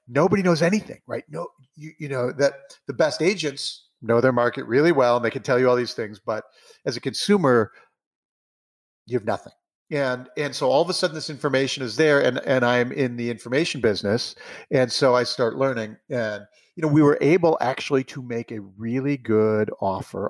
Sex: male